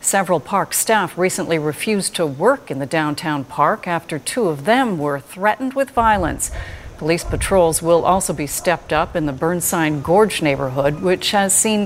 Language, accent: English, American